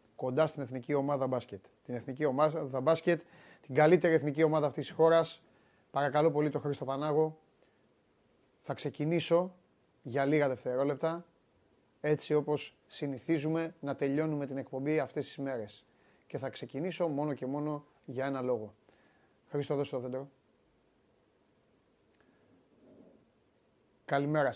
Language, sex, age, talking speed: Greek, male, 30-49, 120 wpm